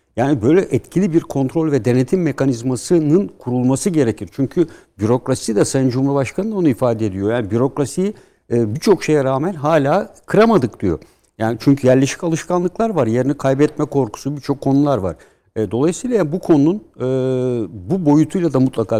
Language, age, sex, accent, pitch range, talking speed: Turkish, 60-79, male, native, 115-150 Hz, 145 wpm